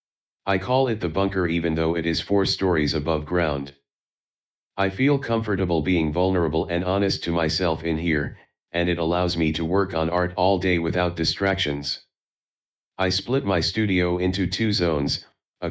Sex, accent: male, American